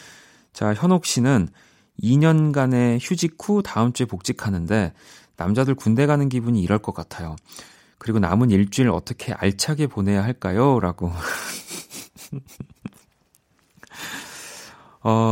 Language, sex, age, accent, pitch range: Korean, male, 30-49, native, 100-140 Hz